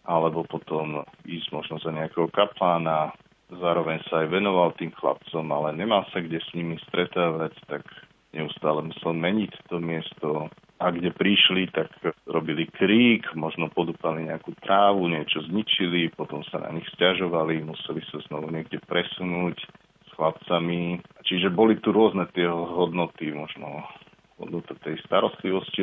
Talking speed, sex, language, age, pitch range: 140 wpm, male, Slovak, 40-59, 80-90 Hz